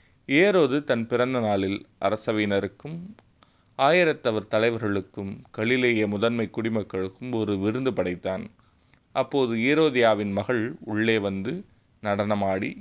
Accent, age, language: native, 30-49, Tamil